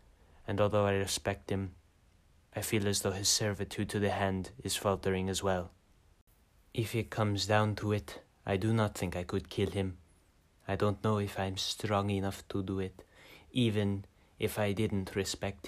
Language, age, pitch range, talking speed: English, 20-39, 90-100 Hz, 180 wpm